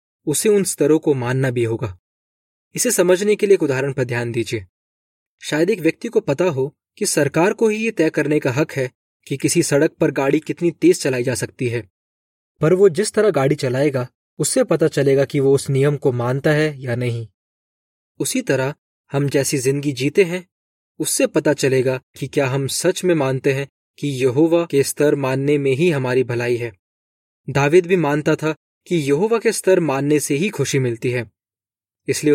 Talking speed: 195 wpm